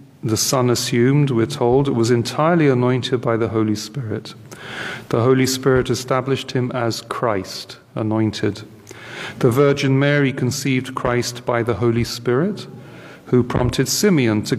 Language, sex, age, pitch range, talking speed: English, male, 40-59, 120-135 Hz, 135 wpm